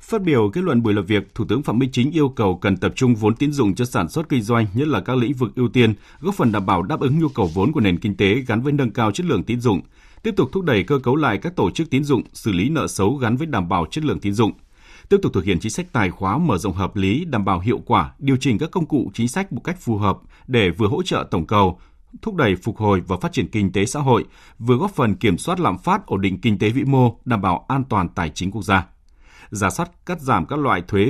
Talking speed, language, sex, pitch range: 290 wpm, Vietnamese, male, 100-140 Hz